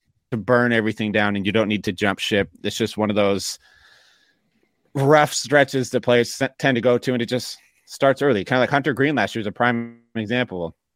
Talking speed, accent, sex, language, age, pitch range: 220 wpm, American, male, English, 30-49, 105-125 Hz